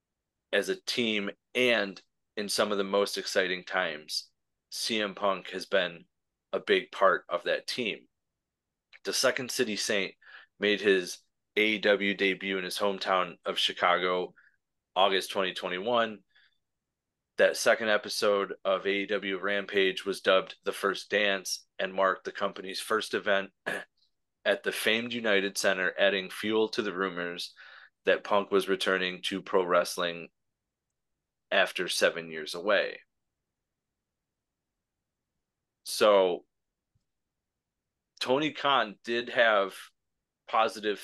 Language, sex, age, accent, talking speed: English, male, 30-49, American, 115 wpm